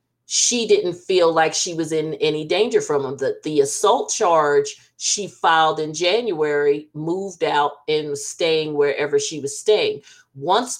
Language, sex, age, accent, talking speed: English, female, 40-59, American, 160 wpm